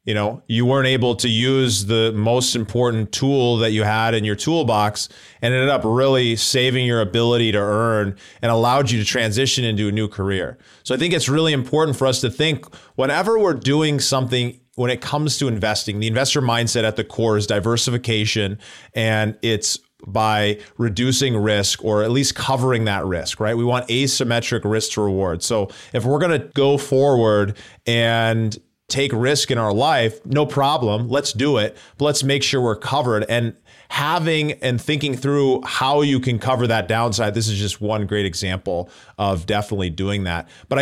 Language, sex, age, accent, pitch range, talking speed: English, male, 30-49, American, 110-130 Hz, 185 wpm